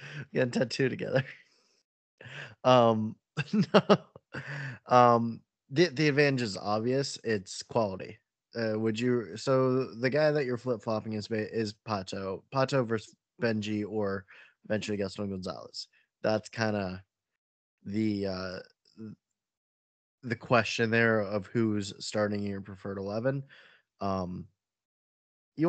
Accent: American